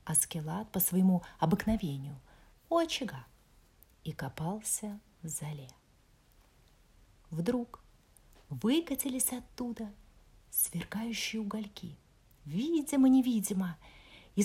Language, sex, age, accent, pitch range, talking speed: Russian, female, 30-49, native, 180-250 Hz, 70 wpm